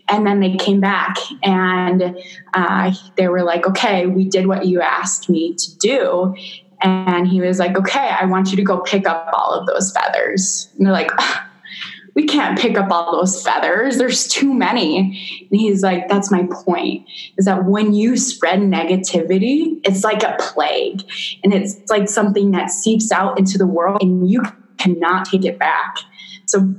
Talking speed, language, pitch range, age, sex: 180 wpm, English, 180-200 Hz, 20-39, female